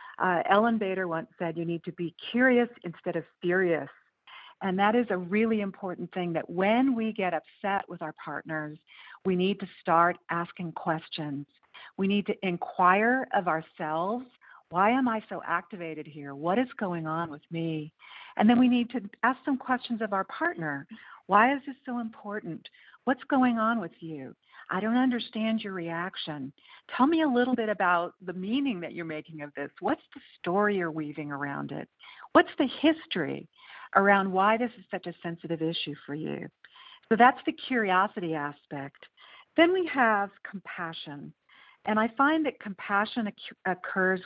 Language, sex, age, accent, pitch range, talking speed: English, female, 50-69, American, 165-230 Hz, 170 wpm